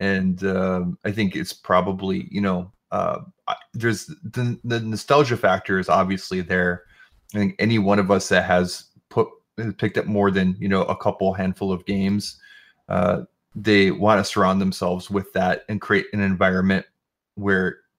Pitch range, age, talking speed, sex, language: 95-105 Hz, 30-49, 170 wpm, male, English